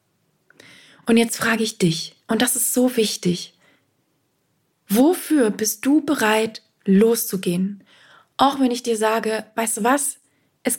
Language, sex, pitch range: German, female, 185-240 Hz